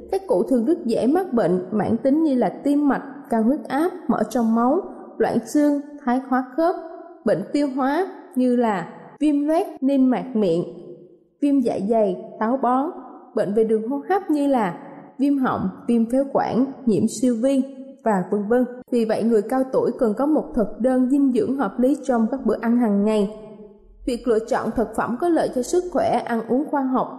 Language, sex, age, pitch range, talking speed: Vietnamese, female, 20-39, 220-280 Hz, 200 wpm